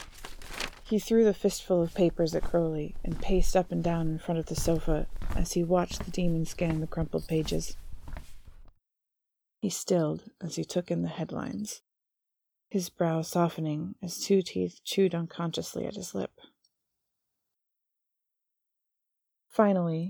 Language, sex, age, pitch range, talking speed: English, female, 30-49, 160-200 Hz, 140 wpm